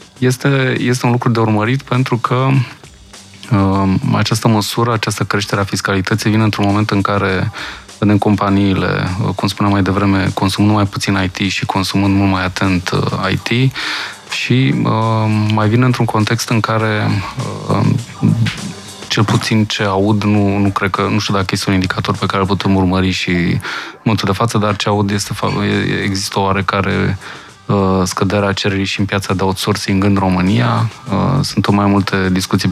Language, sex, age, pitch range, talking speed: Romanian, male, 20-39, 95-110 Hz, 170 wpm